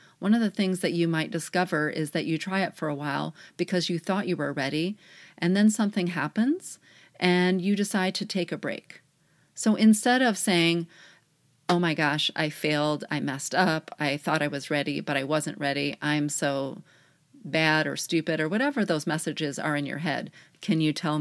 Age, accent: 40-59, American